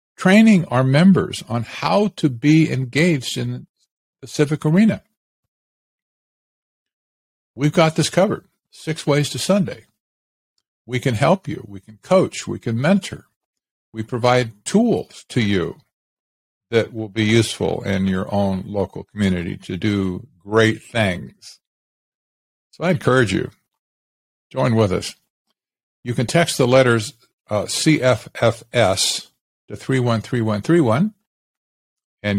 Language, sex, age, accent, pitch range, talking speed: English, male, 50-69, American, 100-130 Hz, 120 wpm